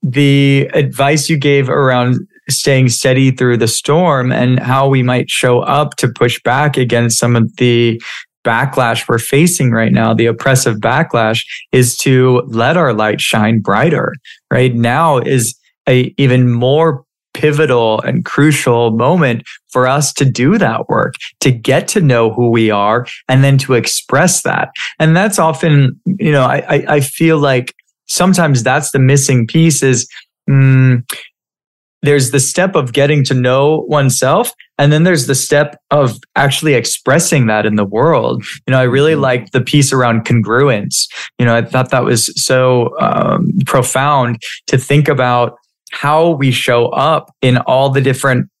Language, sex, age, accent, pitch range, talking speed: English, male, 20-39, American, 120-145 Hz, 165 wpm